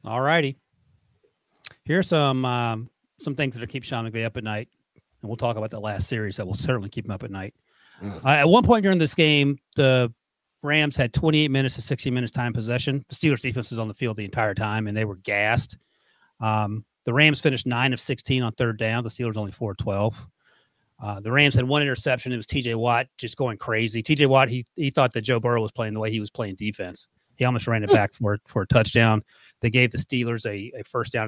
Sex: male